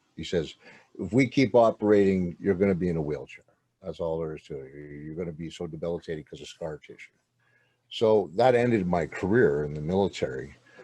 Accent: American